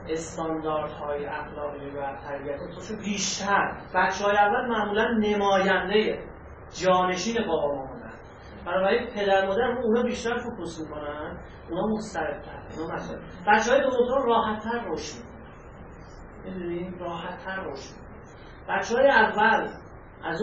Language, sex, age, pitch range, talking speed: Persian, male, 40-59, 170-225 Hz, 120 wpm